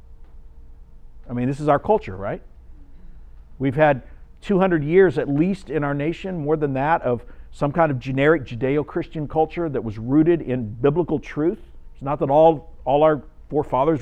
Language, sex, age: English, male, 50-69